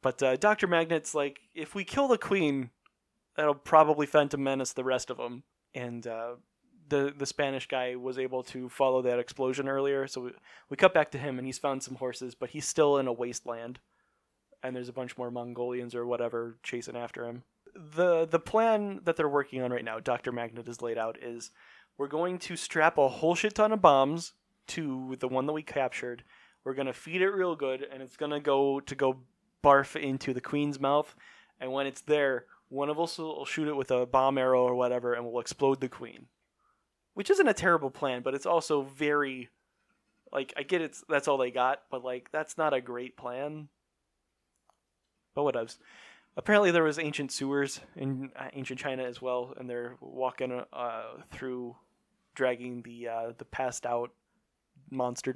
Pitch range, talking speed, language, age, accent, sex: 125-150 Hz, 195 wpm, English, 20-39, American, male